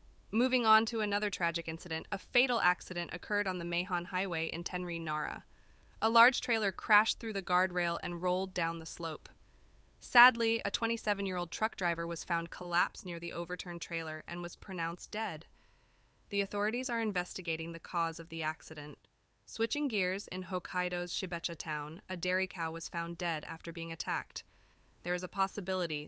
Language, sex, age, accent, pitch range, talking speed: English, female, 20-39, American, 165-205 Hz, 170 wpm